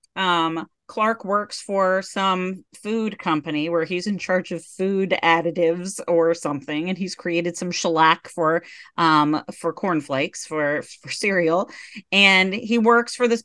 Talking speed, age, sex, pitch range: 145 wpm, 40-59, female, 150-190 Hz